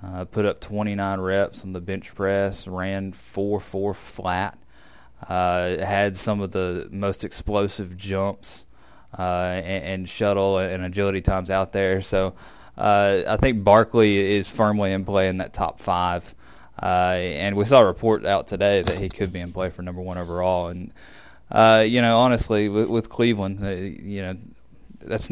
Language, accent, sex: English, American, male